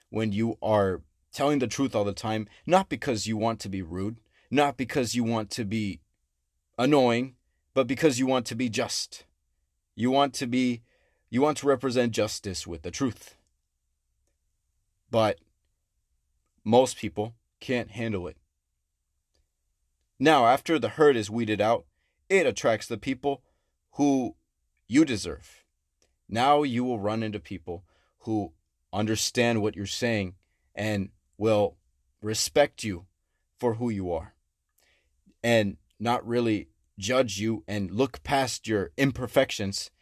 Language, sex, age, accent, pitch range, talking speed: English, male, 30-49, American, 90-125 Hz, 135 wpm